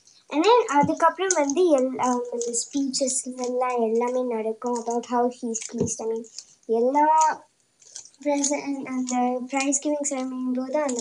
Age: 20-39